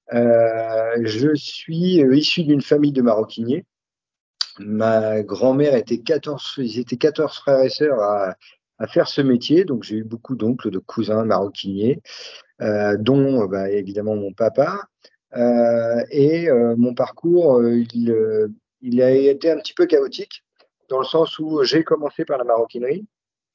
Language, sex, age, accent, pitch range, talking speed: French, male, 40-59, French, 115-150 Hz, 160 wpm